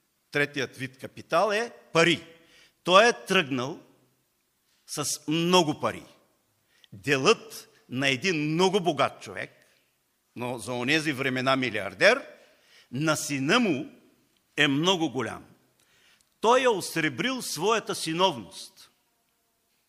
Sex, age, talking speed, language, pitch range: male, 50-69, 100 wpm, Bulgarian, 135-200 Hz